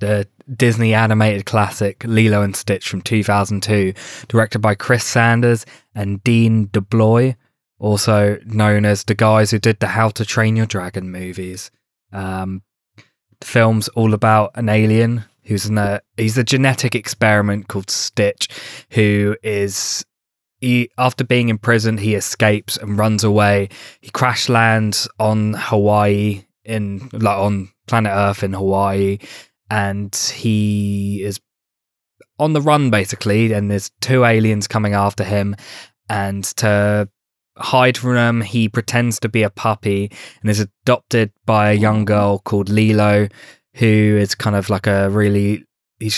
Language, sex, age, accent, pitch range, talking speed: English, male, 20-39, British, 100-115 Hz, 145 wpm